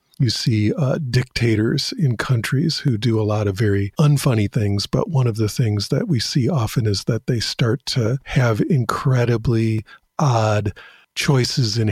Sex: male